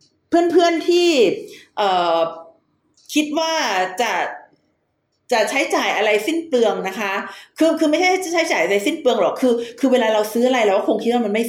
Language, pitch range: Thai, 205-305 Hz